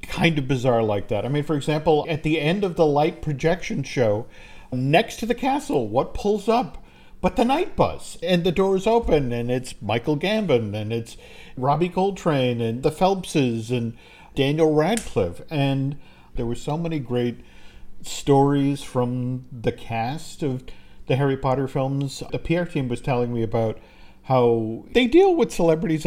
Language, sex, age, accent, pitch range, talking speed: English, male, 50-69, American, 120-170 Hz, 170 wpm